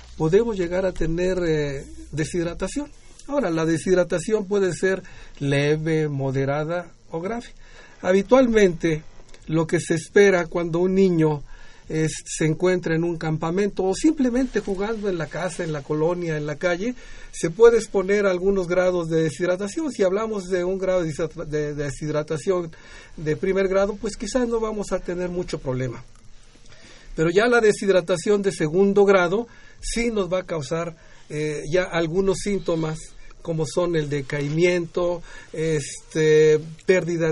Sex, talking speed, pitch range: male, 140 wpm, 155-195 Hz